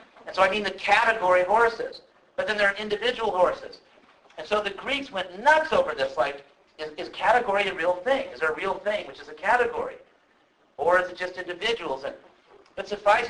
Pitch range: 170-250 Hz